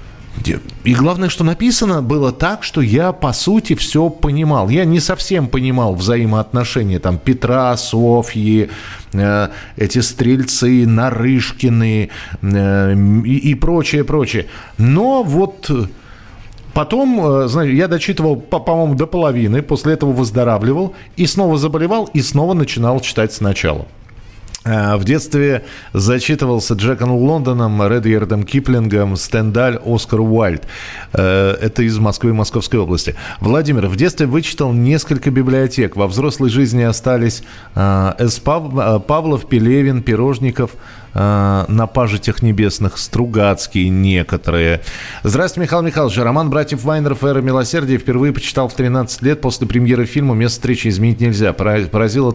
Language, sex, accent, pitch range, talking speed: Russian, male, native, 110-140 Hz, 120 wpm